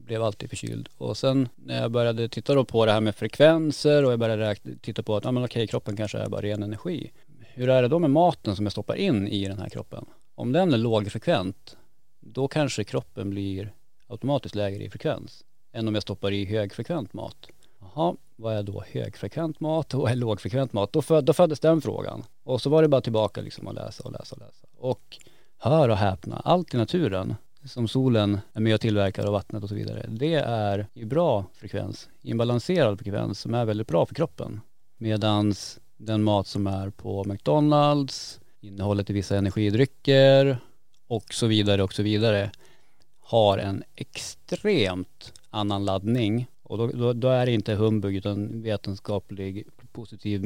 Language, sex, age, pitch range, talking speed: Swedish, male, 30-49, 105-130 Hz, 190 wpm